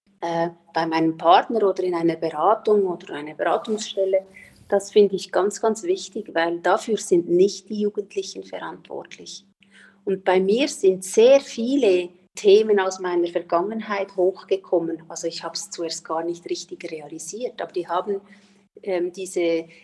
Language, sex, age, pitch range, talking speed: German, female, 40-59, 185-225 Hz, 145 wpm